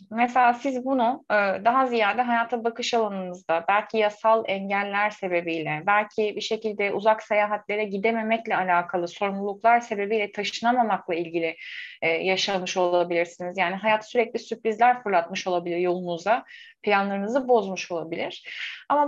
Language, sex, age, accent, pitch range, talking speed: Turkish, female, 30-49, native, 195-255 Hz, 115 wpm